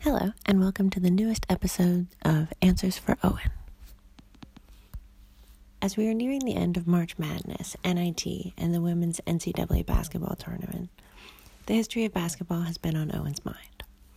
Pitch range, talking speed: 155-185 Hz, 155 wpm